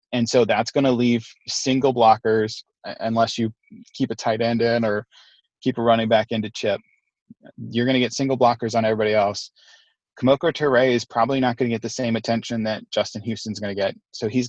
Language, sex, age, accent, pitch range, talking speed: English, male, 20-39, American, 110-125 Hz, 205 wpm